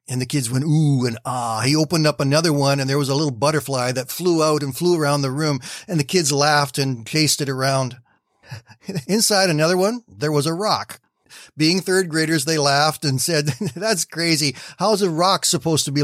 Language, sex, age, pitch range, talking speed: English, male, 40-59, 130-170 Hz, 210 wpm